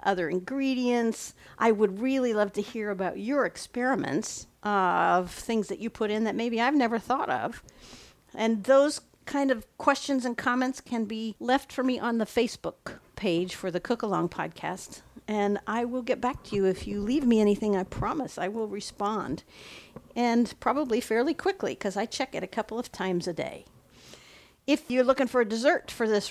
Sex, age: female, 50-69